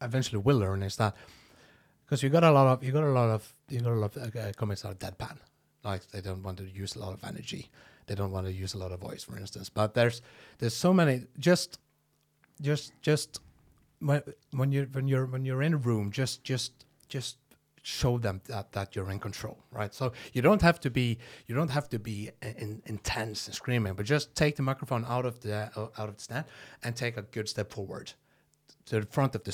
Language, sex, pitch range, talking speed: English, male, 105-140 Hz, 230 wpm